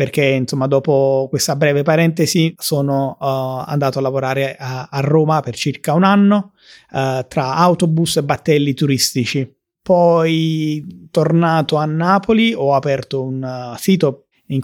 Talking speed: 140 wpm